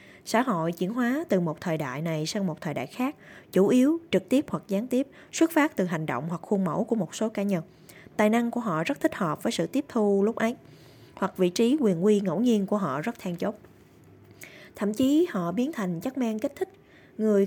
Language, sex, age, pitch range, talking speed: Vietnamese, female, 20-39, 180-240 Hz, 235 wpm